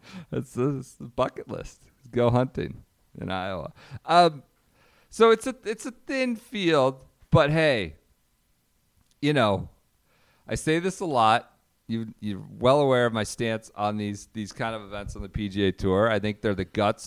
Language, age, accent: English, 40-59, American